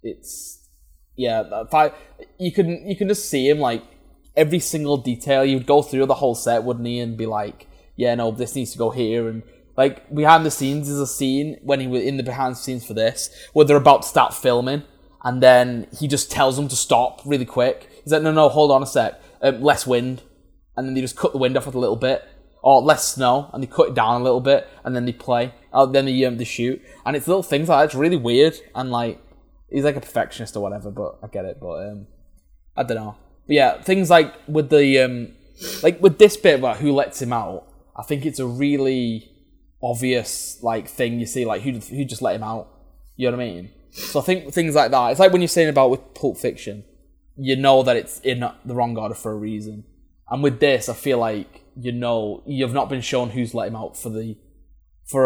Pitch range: 115-140 Hz